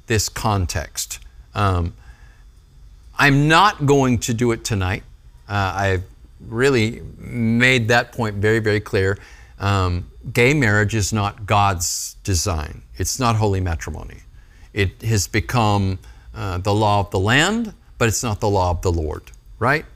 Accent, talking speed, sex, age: American, 145 wpm, male, 50-69